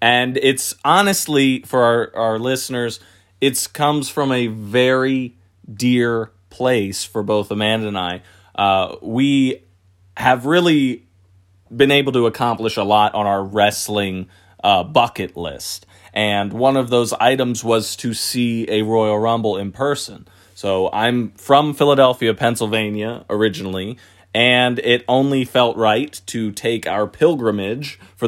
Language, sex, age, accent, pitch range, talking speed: English, male, 30-49, American, 100-130 Hz, 135 wpm